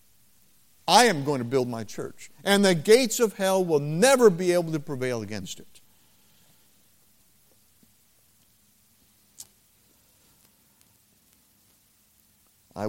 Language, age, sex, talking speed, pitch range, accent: English, 50-69, male, 100 wpm, 105-150 Hz, American